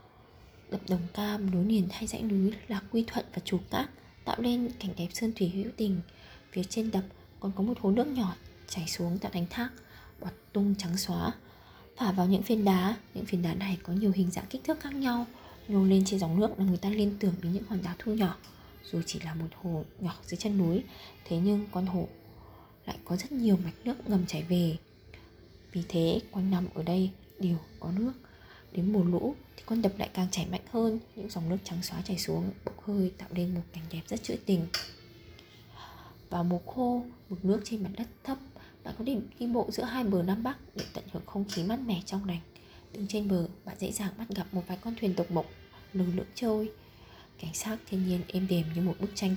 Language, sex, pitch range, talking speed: Vietnamese, female, 175-210 Hz, 225 wpm